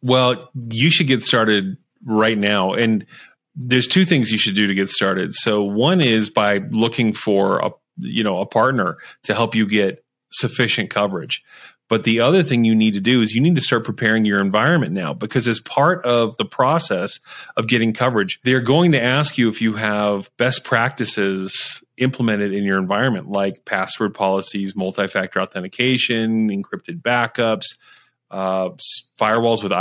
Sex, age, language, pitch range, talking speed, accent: male, 30-49, English, 105-125 Hz, 170 wpm, American